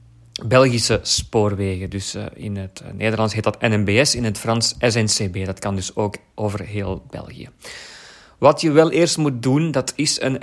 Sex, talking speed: male, 175 wpm